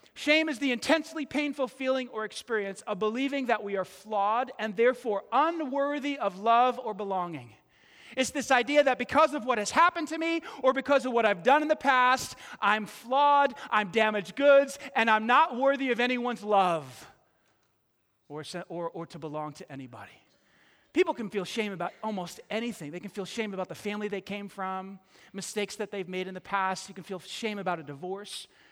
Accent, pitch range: American, 190-255 Hz